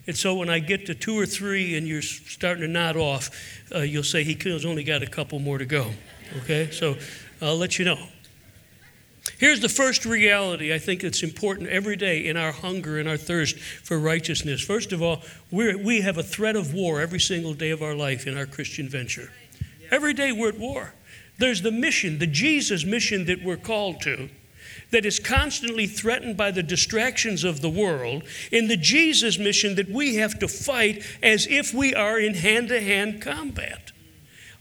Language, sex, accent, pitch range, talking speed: English, male, American, 155-220 Hz, 190 wpm